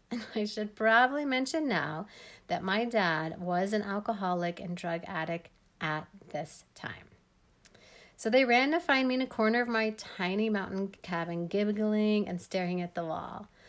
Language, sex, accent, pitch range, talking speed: English, female, American, 170-215 Hz, 160 wpm